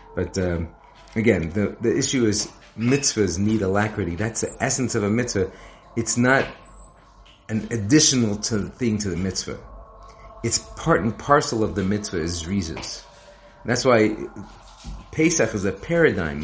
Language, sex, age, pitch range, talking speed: English, male, 40-59, 90-110 Hz, 150 wpm